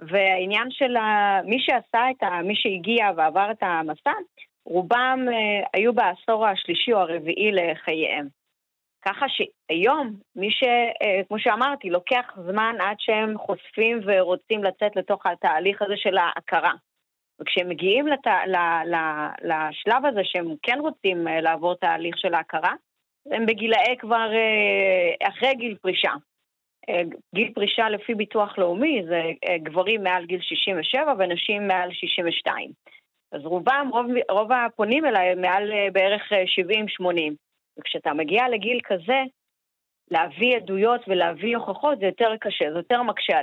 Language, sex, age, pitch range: Hebrew, female, 30-49, 180-230 Hz